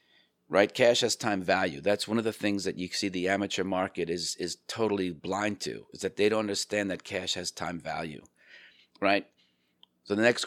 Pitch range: 90-105 Hz